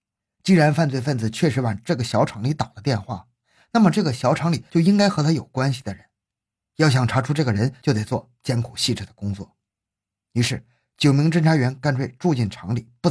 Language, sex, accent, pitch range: Chinese, male, native, 110-150 Hz